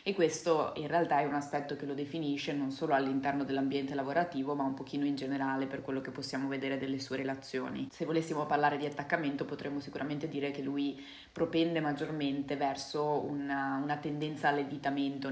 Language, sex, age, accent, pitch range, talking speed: Italian, female, 20-39, native, 140-150 Hz, 175 wpm